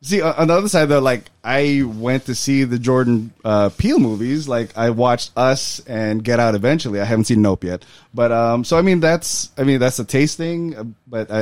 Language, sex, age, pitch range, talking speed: English, male, 20-39, 110-140 Hz, 215 wpm